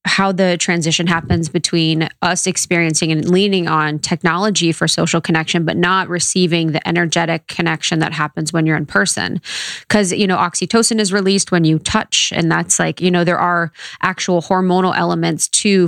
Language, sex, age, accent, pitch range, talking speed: English, female, 20-39, American, 160-180 Hz, 175 wpm